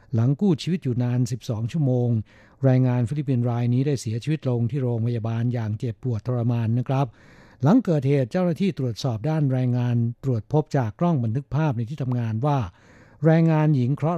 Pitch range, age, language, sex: 120-145 Hz, 60-79, Thai, male